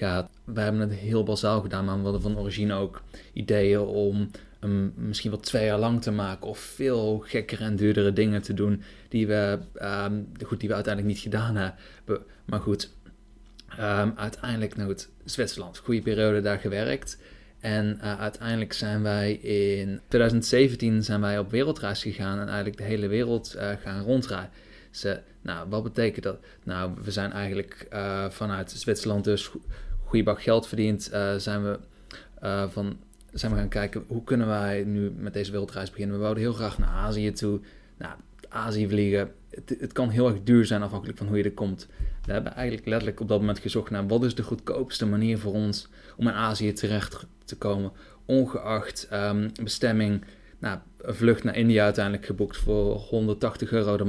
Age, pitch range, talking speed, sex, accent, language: 20-39, 100-110 Hz, 185 wpm, male, Dutch, Dutch